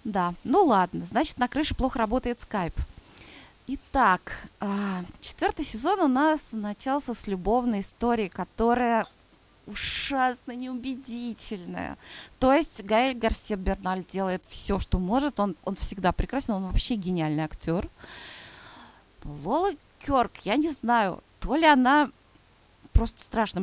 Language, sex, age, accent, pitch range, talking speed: Russian, female, 20-39, native, 195-270 Hz, 120 wpm